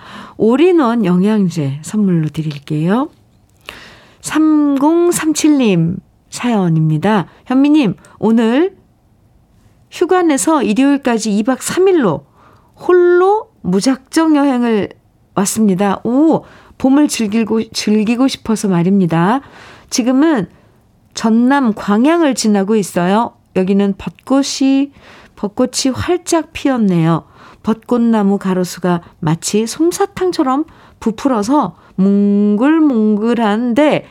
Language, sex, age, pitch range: Korean, female, 50-69, 185-270 Hz